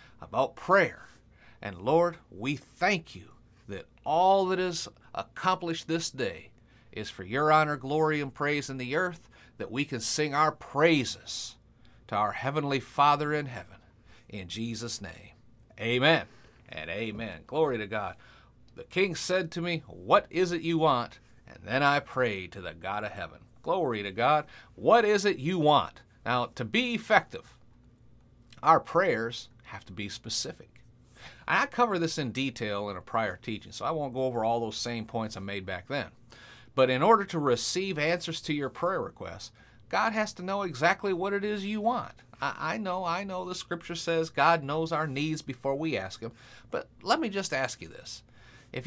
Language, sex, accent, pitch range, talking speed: English, male, American, 115-165 Hz, 180 wpm